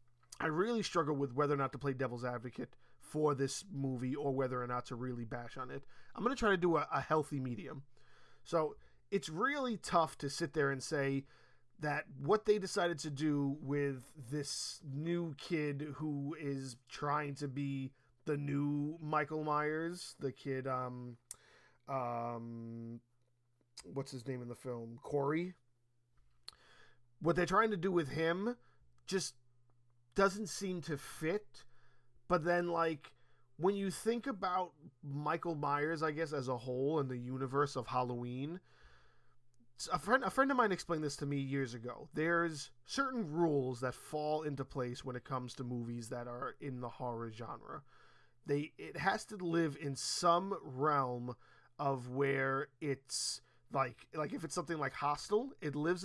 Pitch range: 125-165 Hz